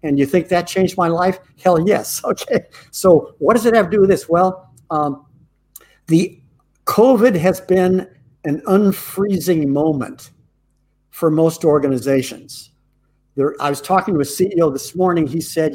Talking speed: 160 wpm